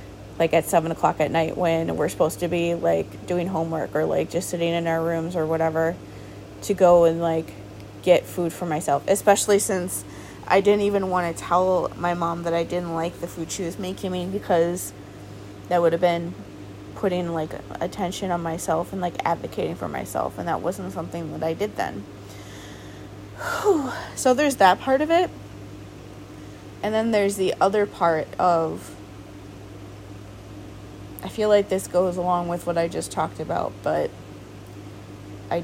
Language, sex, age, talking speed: English, female, 20-39, 170 wpm